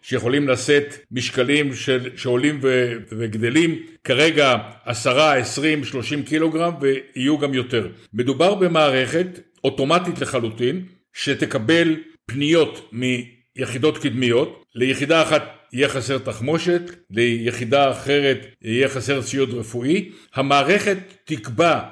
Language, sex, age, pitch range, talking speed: Hebrew, male, 60-79, 125-160 Hz, 100 wpm